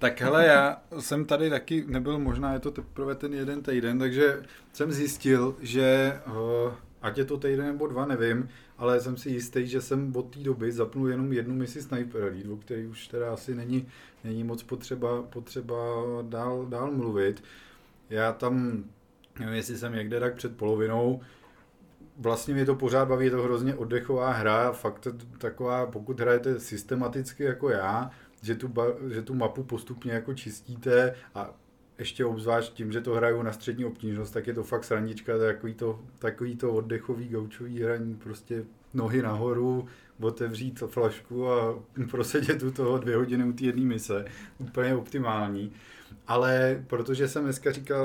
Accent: native